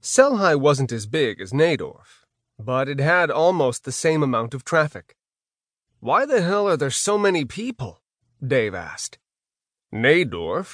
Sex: male